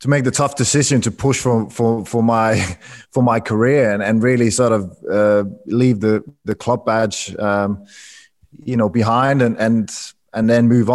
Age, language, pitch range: 20-39, English, 105-125 Hz